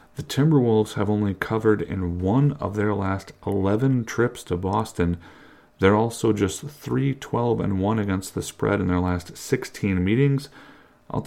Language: English